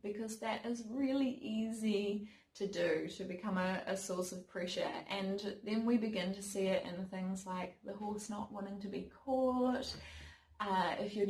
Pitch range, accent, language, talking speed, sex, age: 195-235 Hz, Australian, English, 180 wpm, female, 20-39